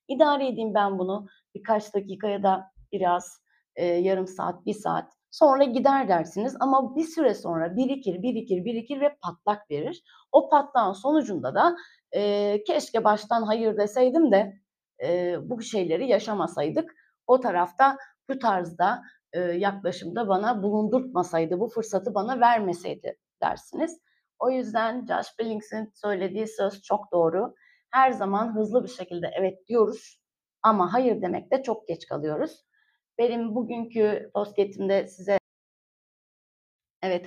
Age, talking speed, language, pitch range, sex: 30-49, 130 wpm, Turkish, 195-250 Hz, female